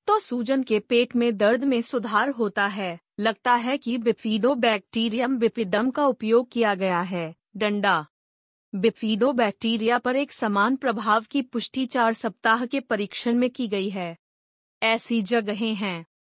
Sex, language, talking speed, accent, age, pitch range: female, Hindi, 145 wpm, native, 30-49, 210-250 Hz